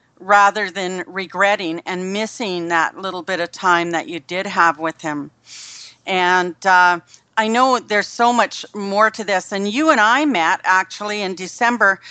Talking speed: 170 wpm